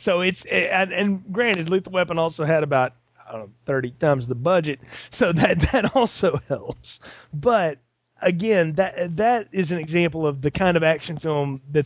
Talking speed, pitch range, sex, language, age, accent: 160 wpm, 135-180 Hz, male, English, 30-49, American